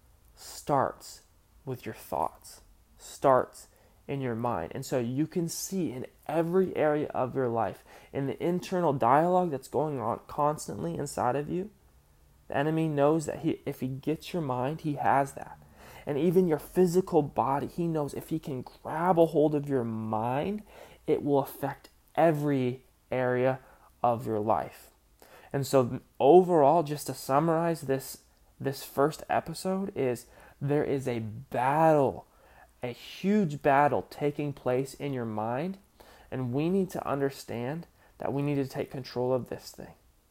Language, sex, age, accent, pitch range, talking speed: English, male, 20-39, American, 125-155 Hz, 155 wpm